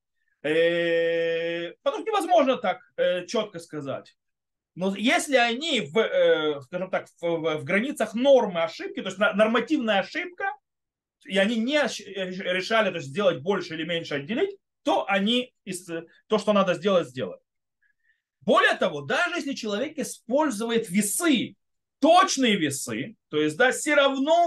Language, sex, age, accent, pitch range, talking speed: Russian, male, 30-49, native, 190-280 Hz, 125 wpm